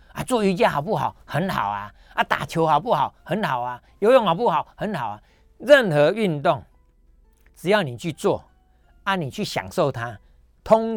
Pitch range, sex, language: 130-195 Hz, male, Chinese